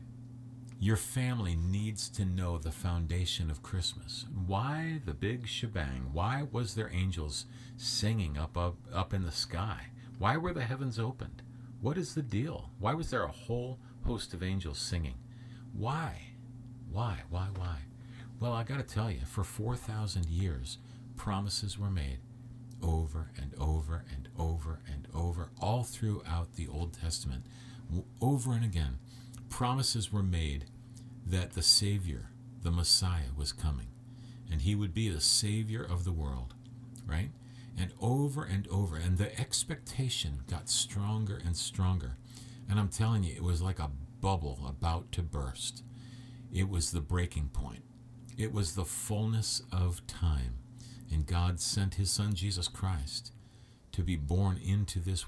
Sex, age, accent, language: male, 50-69, American, English